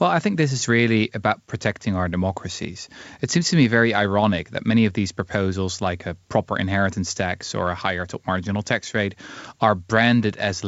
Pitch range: 95-125 Hz